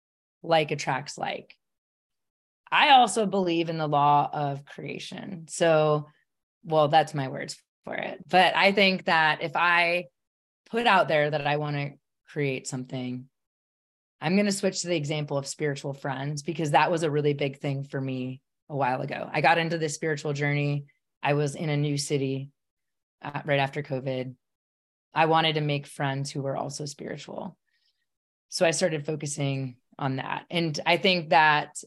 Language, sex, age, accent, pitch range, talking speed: English, female, 20-39, American, 145-170 Hz, 170 wpm